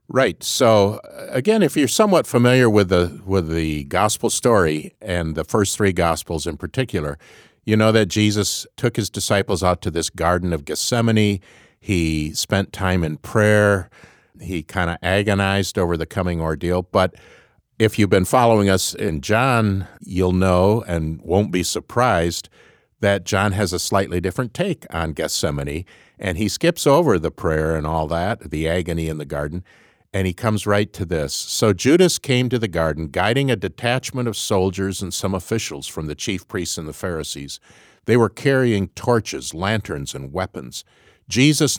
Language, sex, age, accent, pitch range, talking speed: English, male, 50-69, American, 85-110 Hz, 170 wpm